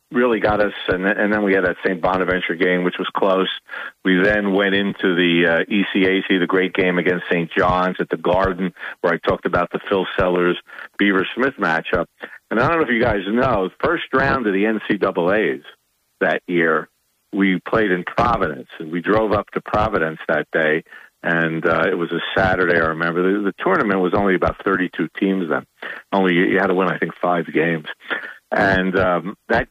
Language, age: English, 50-69